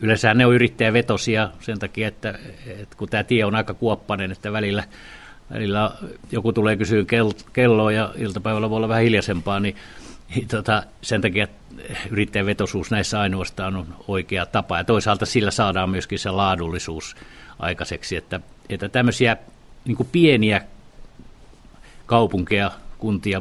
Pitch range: 100-115 Hz